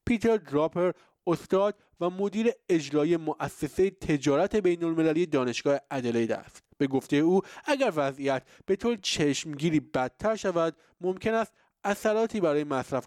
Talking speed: 130 wpm